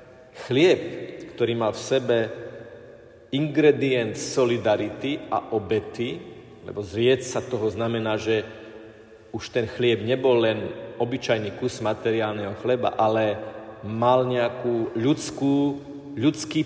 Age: 40-59